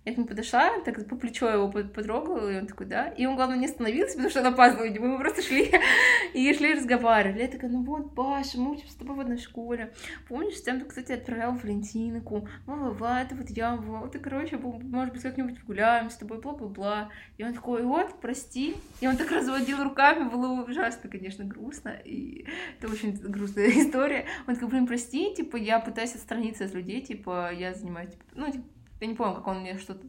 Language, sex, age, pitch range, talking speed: Russian, female, 20-39, 210-265 Hz, 210 wpm